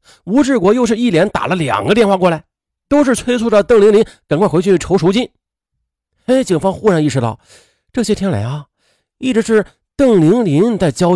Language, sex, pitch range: Chinese, male, 135-220 Hz